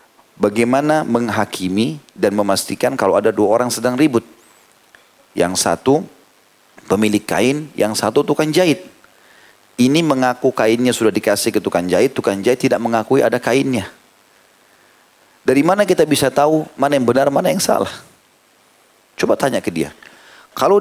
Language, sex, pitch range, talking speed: Indonesian, male, 115-150 Hz, 140 wpm